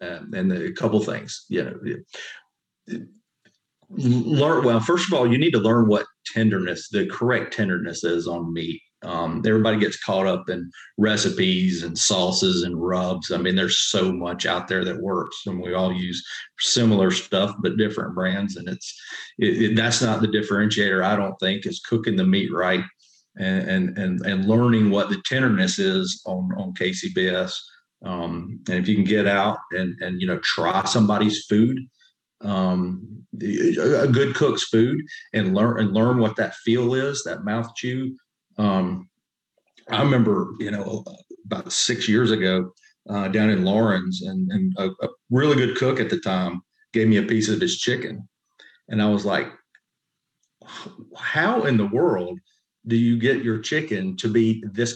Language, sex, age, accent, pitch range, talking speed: English, male, 40-59, American, 95-140 Hz, 175 wpm